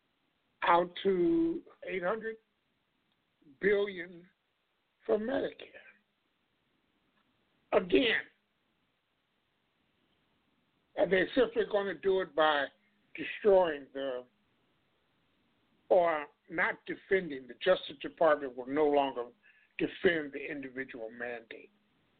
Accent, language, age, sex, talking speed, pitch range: American, English, 60-79, male, 80 wpm, 145-195 Hz